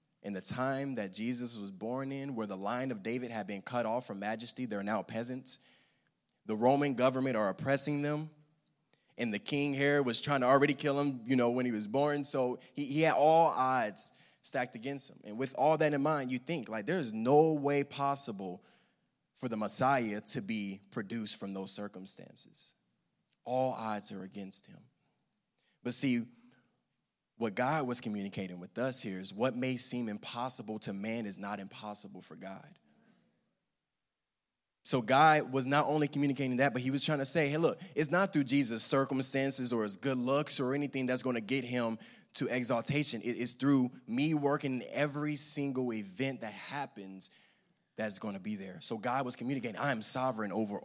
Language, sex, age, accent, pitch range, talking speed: English, male, 20-39, American, 110-140 Hz, 185 wpm